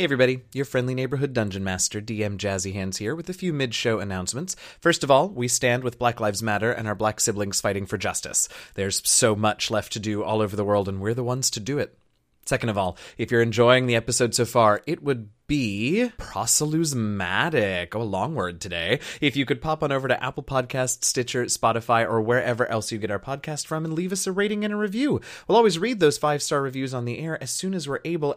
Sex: male